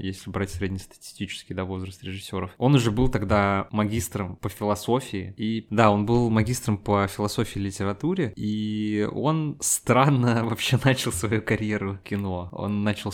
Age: 20-39